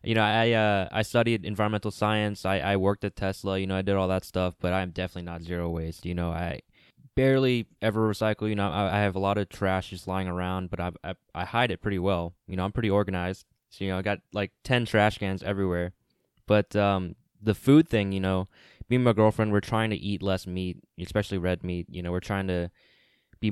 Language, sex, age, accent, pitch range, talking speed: English, male, 10-29, American, 90-105 Hz, 235 wpm